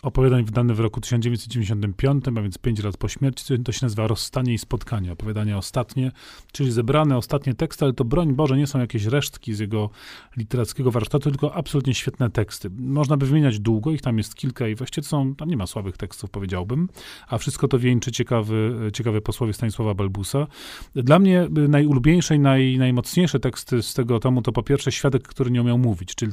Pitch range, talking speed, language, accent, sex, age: 110-135 Hz, 195 wpm, Polish, native, male, 30-49